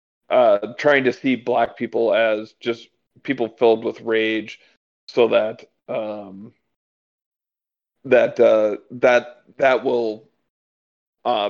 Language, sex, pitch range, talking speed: English, male, 115-135 Hz, 110 wpm